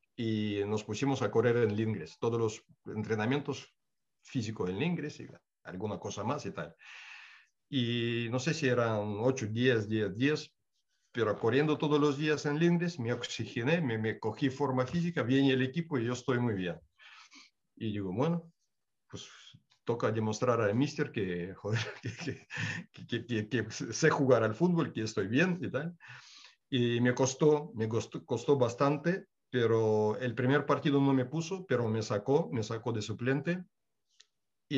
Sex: male